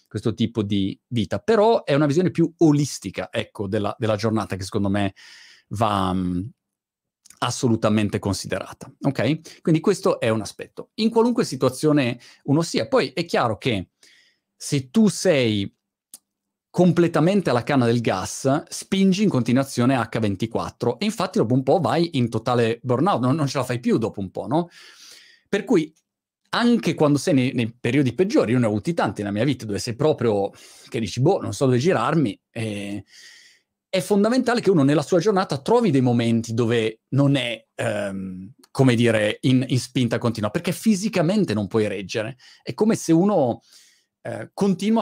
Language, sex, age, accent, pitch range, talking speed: Italian, male, 30-49, native, 110-175 Hz, 165 wpm